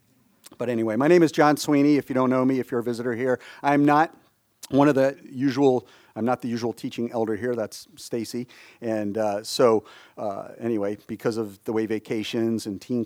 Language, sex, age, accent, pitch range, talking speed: English, male, 40-59, American, 110-140 Hz, 200 wpm